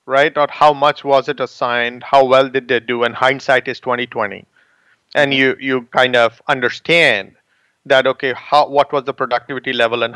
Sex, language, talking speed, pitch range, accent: male, English, 185 wpm, 135-175 Hz, Indian